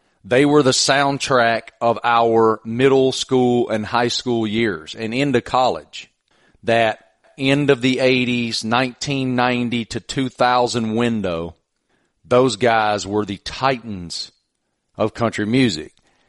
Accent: American